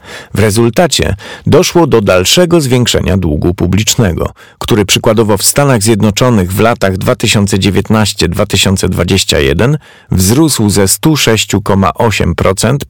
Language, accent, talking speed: Polish, native, 90 wpm